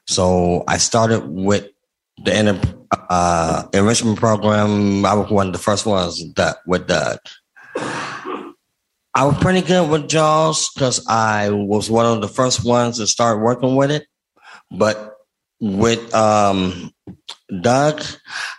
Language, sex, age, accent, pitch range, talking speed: English, male, 30-49, American, 105-135 Hz, 130 wpm